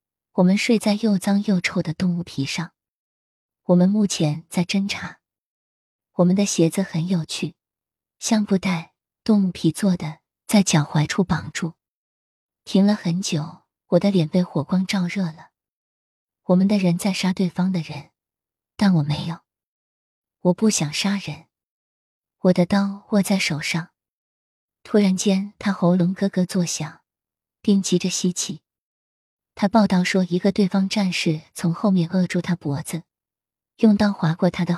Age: 20-39